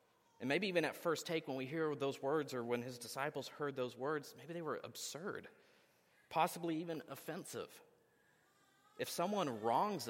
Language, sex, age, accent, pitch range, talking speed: English, male, 40-59, American, 120-170 Hz, 165 wpm